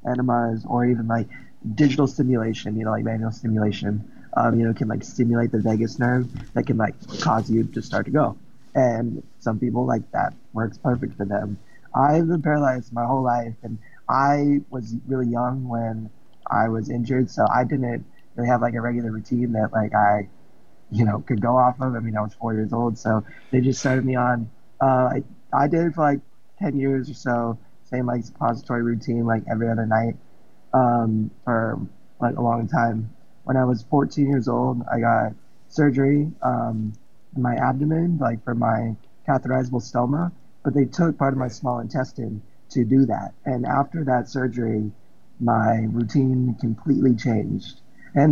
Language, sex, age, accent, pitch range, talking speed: English, male, 20-39, American, 115-135 Hz, 185 wpm